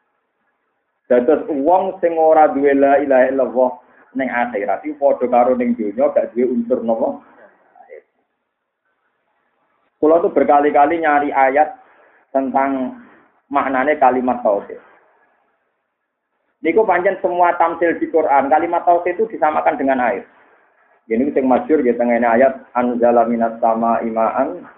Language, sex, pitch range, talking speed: Indonesian, male, 130-180 Hz, 120 wpm